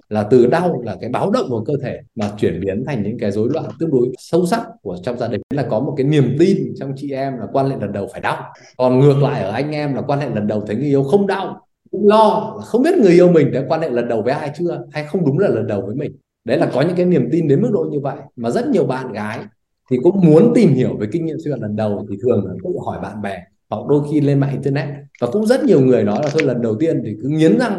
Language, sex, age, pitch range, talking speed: Vietnamese, male, 20-39, 125-175 Hz, 300 wpm